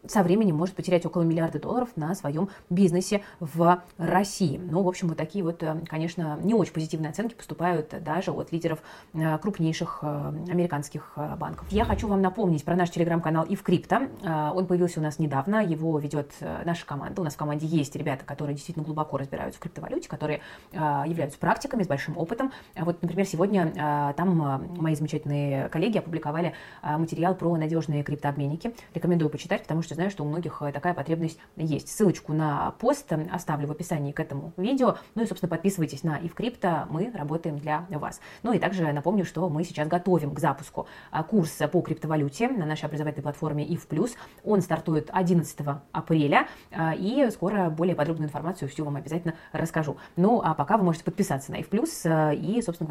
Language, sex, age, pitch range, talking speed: Russian, female, 20-39, 155-185 Hz, 170 wpm